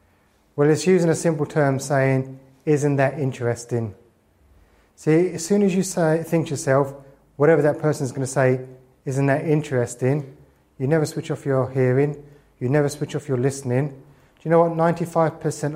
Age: 30-49